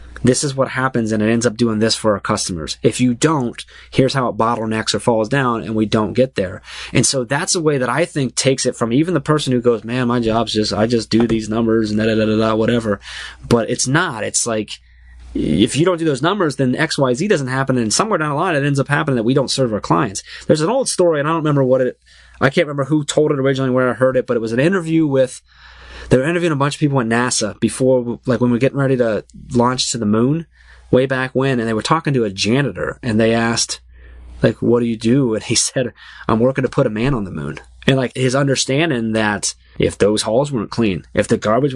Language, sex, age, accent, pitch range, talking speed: English, male, 20-39, American, 105-135 Hz, 255 wpm